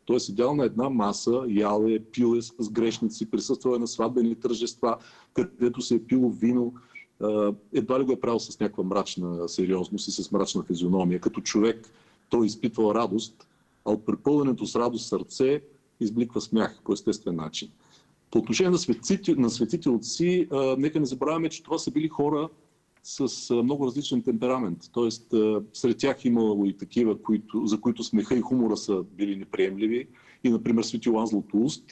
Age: 40-59